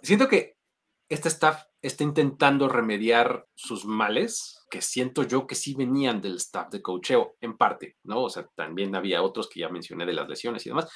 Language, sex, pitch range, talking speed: Spanish, male, 120-175 Hz, 190 wpm